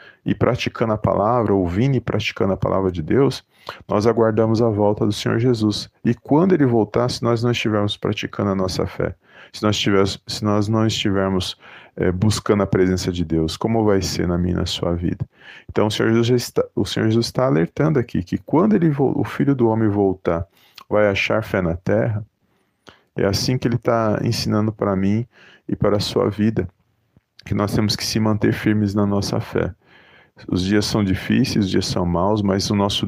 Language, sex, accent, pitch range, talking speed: Portuguese, male, Brazilian, 100-120 Hz, 200 wpm